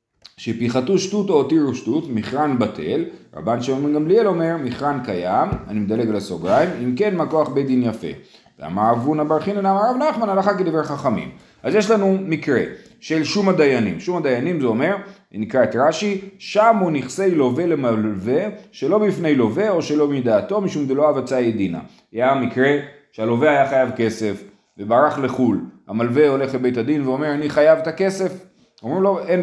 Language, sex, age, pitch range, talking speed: Hebrew, male, 30-49, 130-195 Hz, 160 wpm